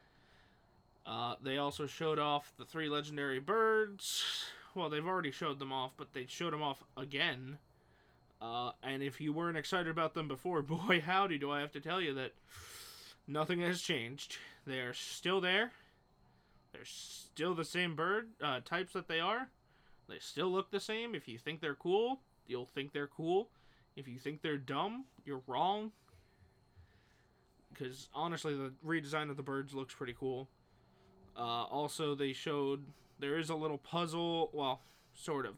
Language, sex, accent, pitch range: English, male, American, 130-165 Hz